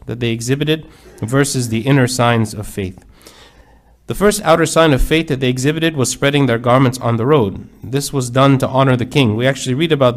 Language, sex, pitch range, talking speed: English, male, 115-145 Hz, 210 wpm